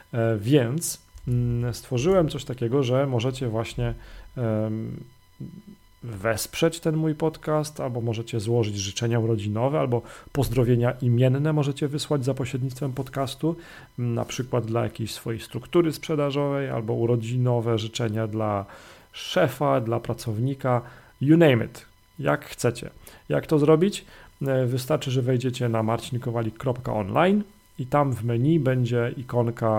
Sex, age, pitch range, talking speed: male, 40-59, 115-140 Hz, 115 wpm